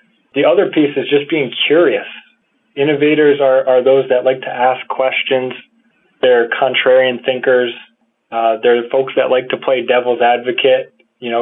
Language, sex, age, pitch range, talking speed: English, male, 20-39, 120-135 Hz, 160 wpm